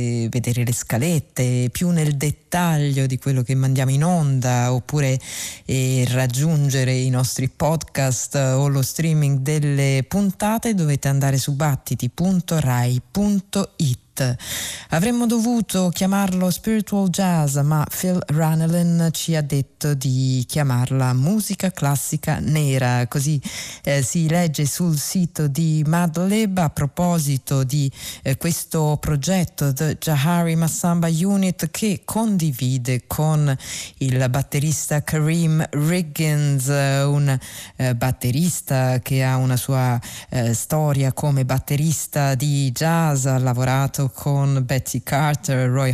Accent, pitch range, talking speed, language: native, 130-165 Hz, 115 wpm, Italian